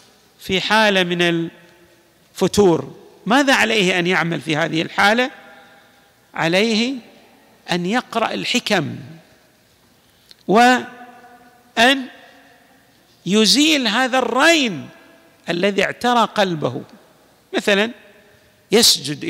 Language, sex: Arabic, male